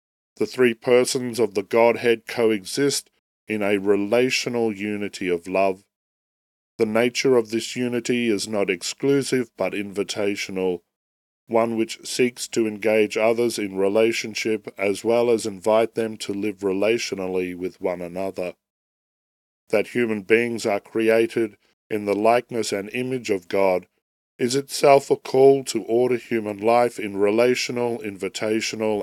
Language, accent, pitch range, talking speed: English, Australian, 100-120 Hz, 135 wpm